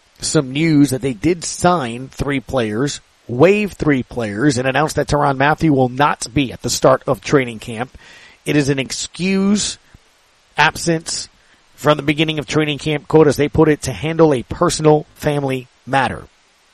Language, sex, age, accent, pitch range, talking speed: English, male, 40-59, American, 130-160 Hz, 170 wpm